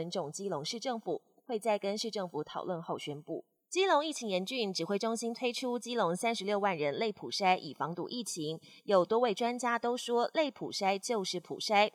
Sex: female